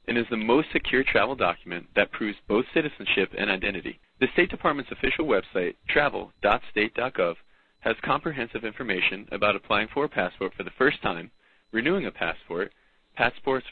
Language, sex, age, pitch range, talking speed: English, male, 20-39, 100-135 Hz, 155 wpm